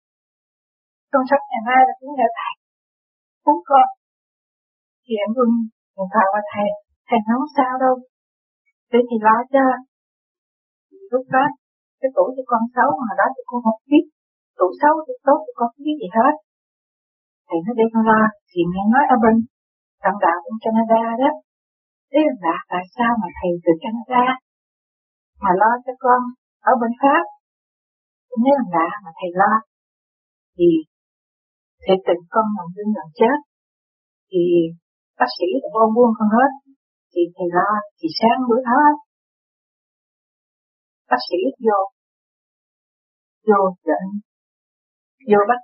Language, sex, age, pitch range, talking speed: Vietnamese, female, 50-69, 200-265 Hz, 135 wpm